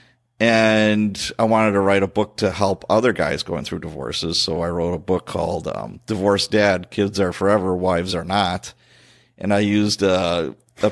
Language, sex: English, male